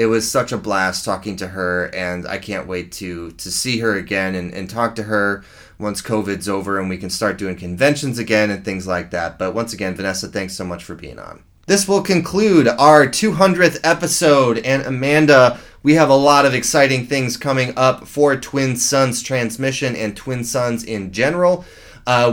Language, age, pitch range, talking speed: English, 20-39, 105-135 Hz, 195 wpm